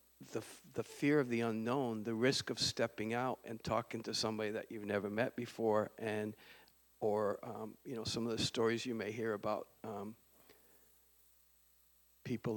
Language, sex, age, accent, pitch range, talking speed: English, male, 50-69, American, 110-125 Hz, 170 wpm